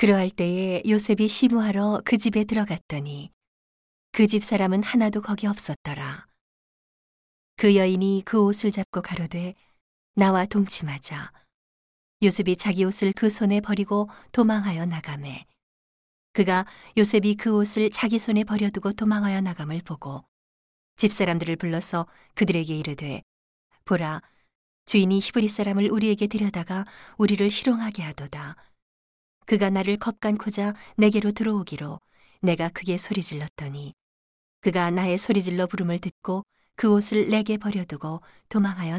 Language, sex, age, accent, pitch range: Korean, female, 40-59, native, 165-210 Hz